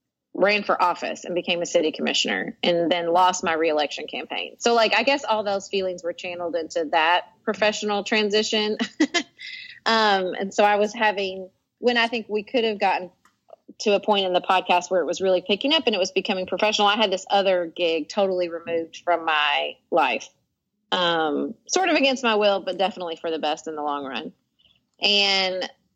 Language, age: English, 30-49